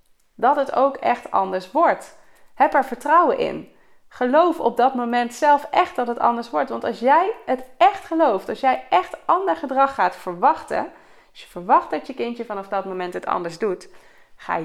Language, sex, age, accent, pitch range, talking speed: Dutch, female, 20-39, Dutch, 215-295 Hz, 190 wpm